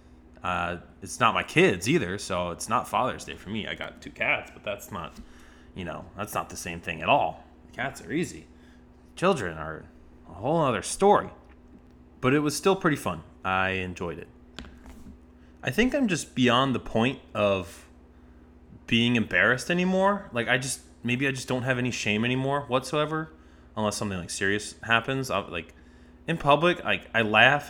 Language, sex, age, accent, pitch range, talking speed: English, male, 20-39, American, 85-125 Hz, 175 wpm